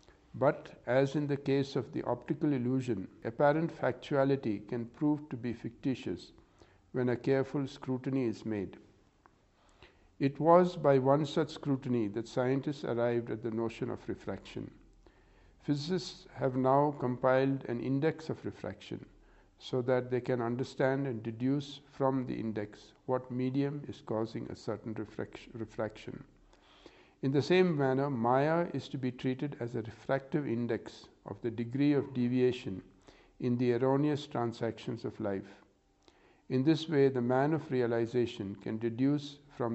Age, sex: 60-79, male